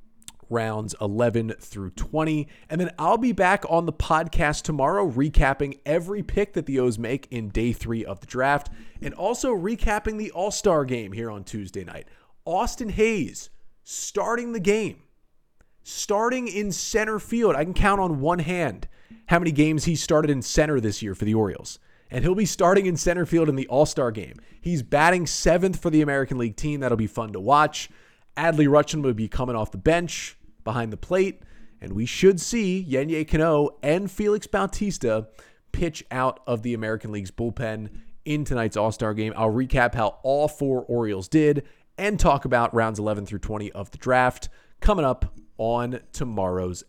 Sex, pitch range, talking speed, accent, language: male, 115-175 Hz, 180 wpm, American, English